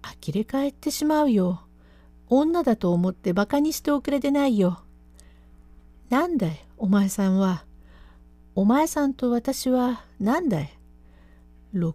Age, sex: 50-69, female